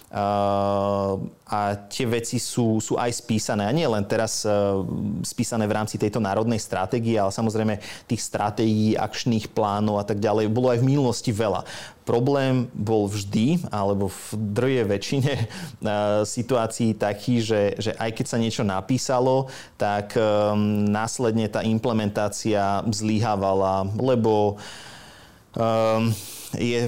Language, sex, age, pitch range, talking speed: Slovak, male, 30-49, 105-115 Hz, 130 wpm